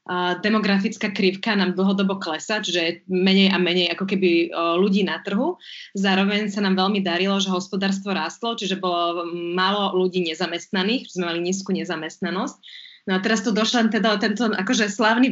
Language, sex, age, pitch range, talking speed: Slovak, female, 20-39, 185-215 Hz, 160 wpm